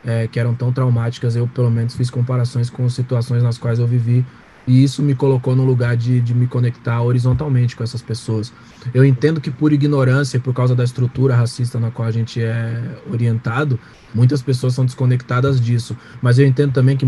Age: 20-39